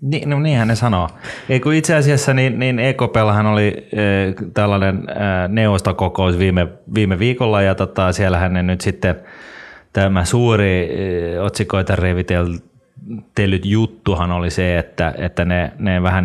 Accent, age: native, 20-39